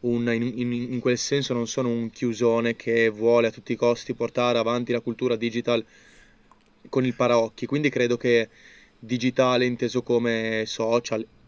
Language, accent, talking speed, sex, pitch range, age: Italian, native, 155 wpm, male, 115-125 Hz, 20-39